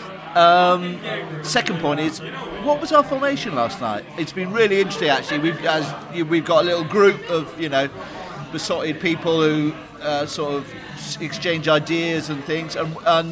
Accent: British